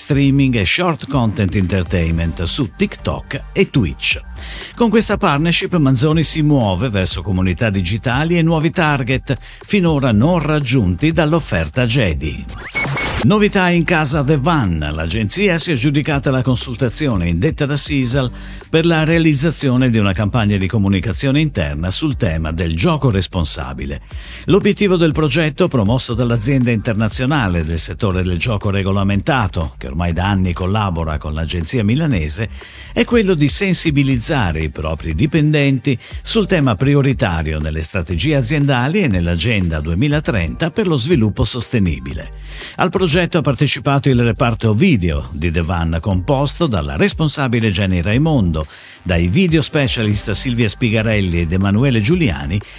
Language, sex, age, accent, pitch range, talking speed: Italian, male, 50-69, native, 95-155 Hz, 135 wpm